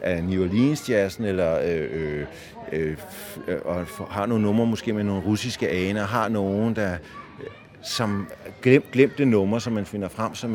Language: Danish